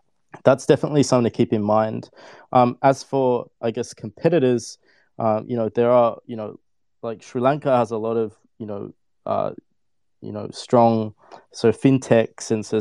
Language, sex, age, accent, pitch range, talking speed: English, male, 20-39, Australian, 105-120 Hz, 185 wpm